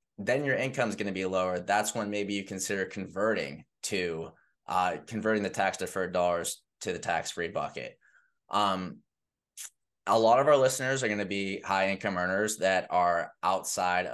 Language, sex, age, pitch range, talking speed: English, male, 20-39, 90-105 Hz, 180 wpm